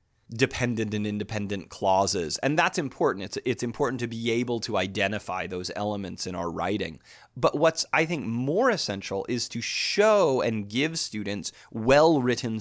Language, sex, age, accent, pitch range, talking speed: English, male, 30-49, American, 105-145 Hz, 155 wpm